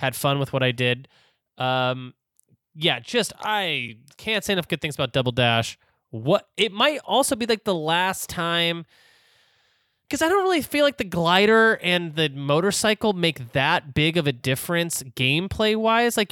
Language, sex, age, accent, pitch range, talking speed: English, male, 20-39, American, 125-180 Hz, 170 wpm